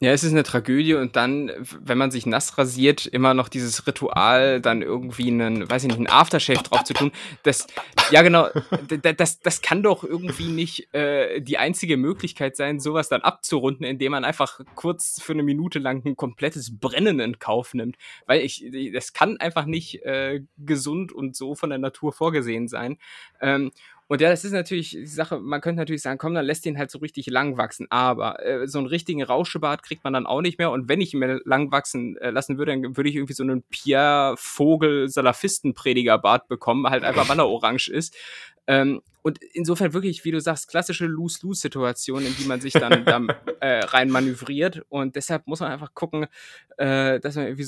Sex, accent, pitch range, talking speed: male, German, 130-160 Hz, 210 wpm